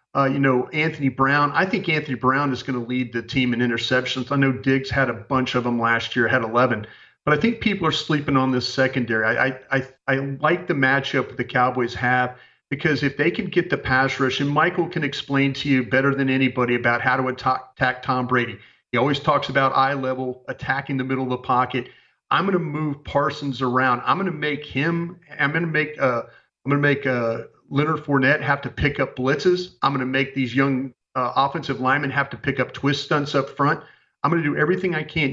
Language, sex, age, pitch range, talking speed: English, male, 40-59, 125-145 Hz, 235 wpm